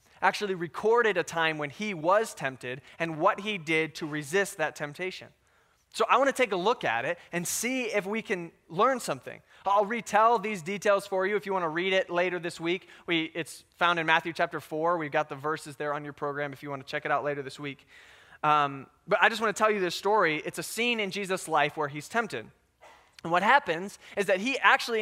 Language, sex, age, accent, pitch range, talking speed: English, male, 20-39, American, 155-215 Hz, 225 wpm